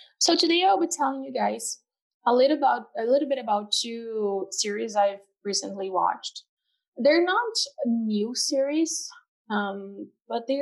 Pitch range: 200-275 Hz